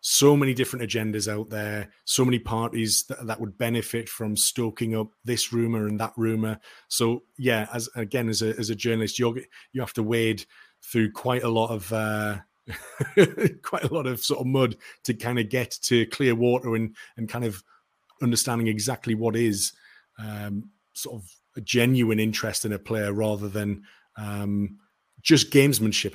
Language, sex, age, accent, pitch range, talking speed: English, male, 30-49, British, 110-130 Hz, 175 wpm